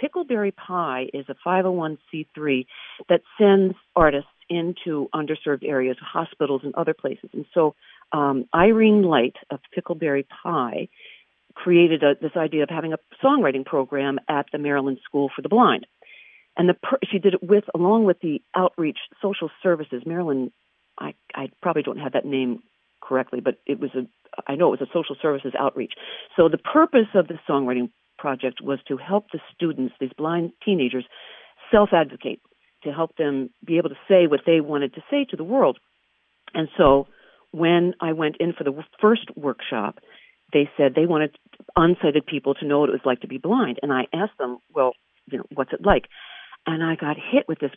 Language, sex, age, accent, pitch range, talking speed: English, female, 50-69, American, 140-180 Hz, 180 wpm